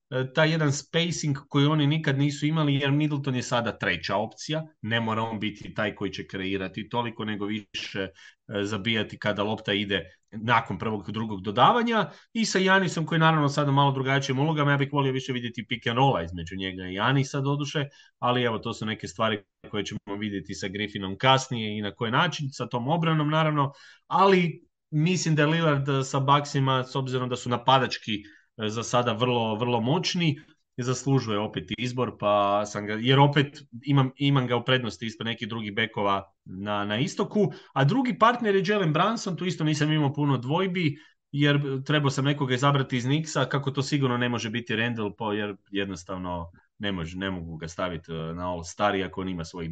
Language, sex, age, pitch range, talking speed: English, male, 30-49, 105-145 Hz, 185 wpm